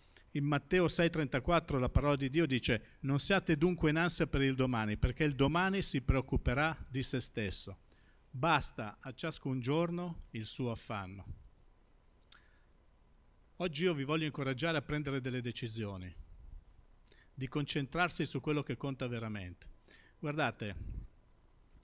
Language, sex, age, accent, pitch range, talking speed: Italian, male, 50-69, native, 120-155 Hz, 130 wpm